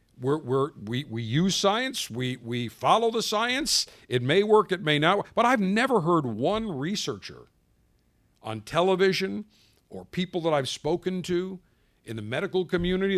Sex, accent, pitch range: male, American, 125-200 Hz